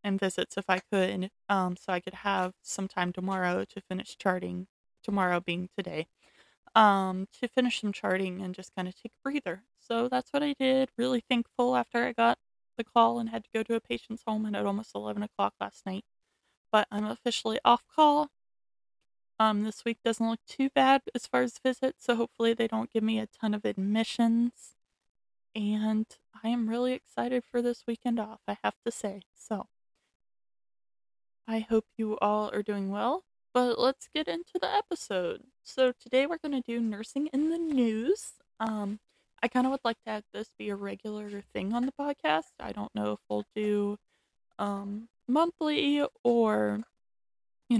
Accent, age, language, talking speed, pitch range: American, 20-39, English, 185 wpm, 190-250 Hz